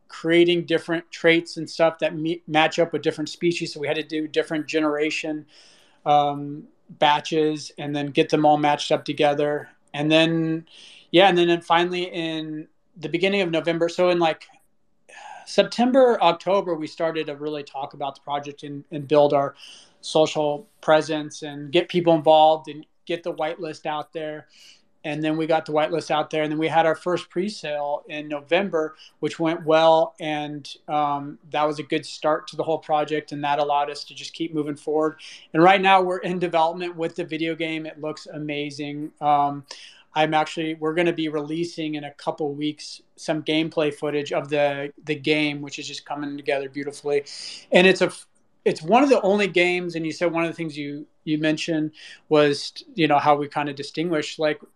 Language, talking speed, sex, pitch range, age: English, 190 wpm, male, 150-165 Hz, 30-49